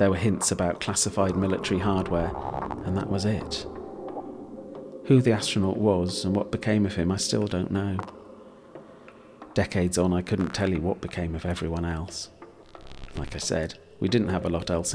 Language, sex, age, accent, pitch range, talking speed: English, male, 40-59, British, 85-105 Hz, 175 wpm